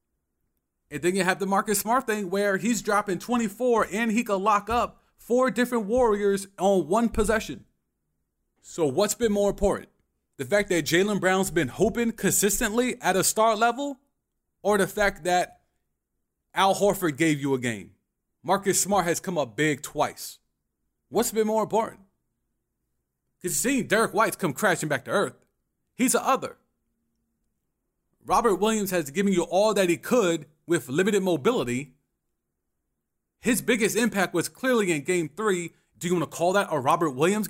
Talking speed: 165 wpm